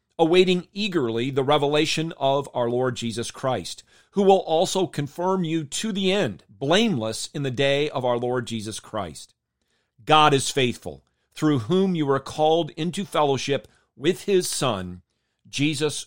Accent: American